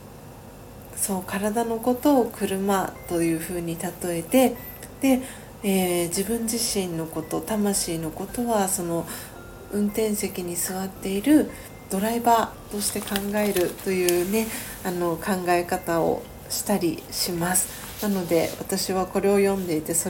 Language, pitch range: Japanese, 175-215 Hz